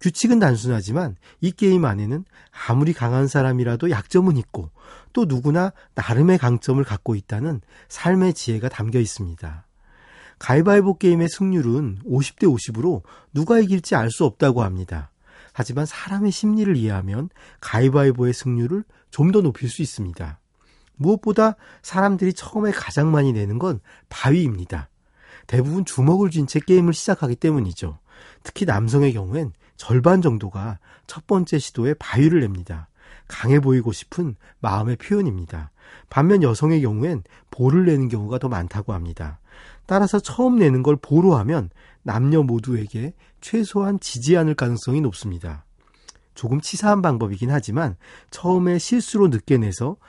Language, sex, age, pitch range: Korean, male, 40-59, 115-175 Hz